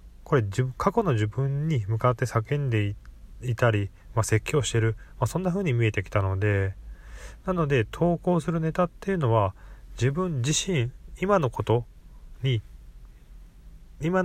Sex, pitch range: male, 100-140 Hz